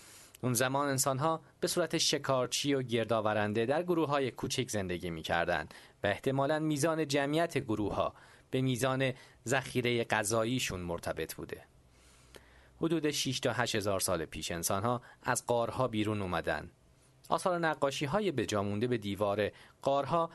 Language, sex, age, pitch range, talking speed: English, male, 40-59, 105-140 Hz, 140 wpm